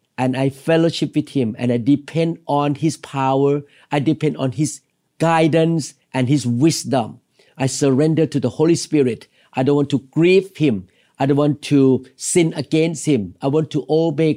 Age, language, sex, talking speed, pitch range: 50-69, English, male, 175 wpm, 135-175 Hz